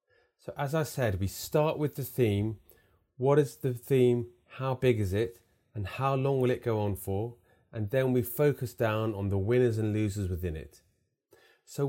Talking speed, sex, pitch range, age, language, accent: 190 wpm, male, 100-130 Hz, 30-49, English, British